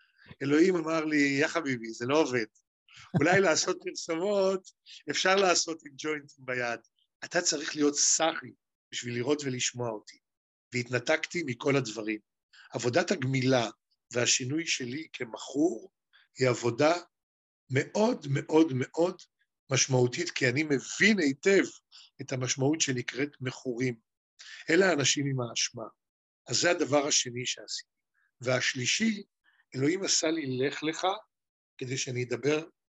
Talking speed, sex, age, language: 120 wpm, male, 50-69, Hebrew